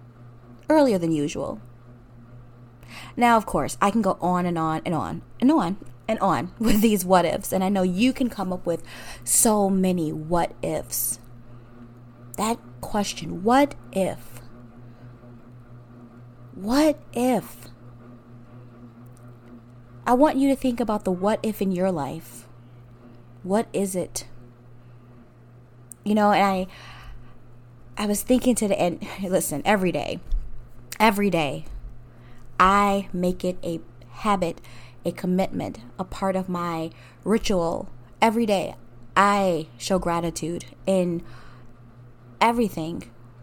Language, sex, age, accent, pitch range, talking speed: English, female, 30-49, American, 120-195 Hz, 125 wpm